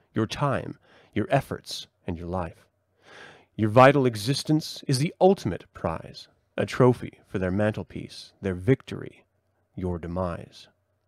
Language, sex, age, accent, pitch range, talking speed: English, male, 30-49, American, 100-140 Hz, 125 wpm